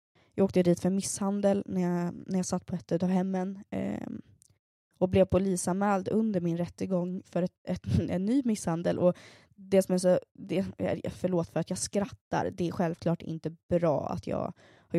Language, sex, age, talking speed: Swedish, female, 20-39, 160 wpm